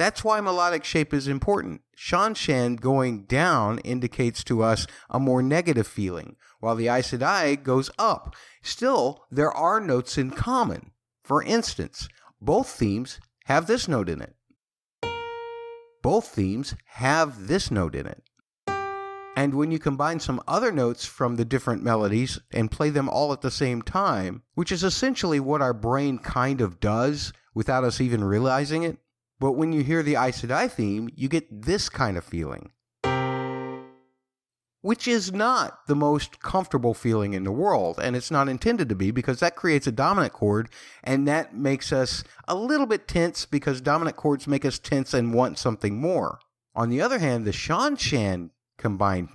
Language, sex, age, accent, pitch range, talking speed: English, male, 50-69, American, 110-150 Hz, 170 wpm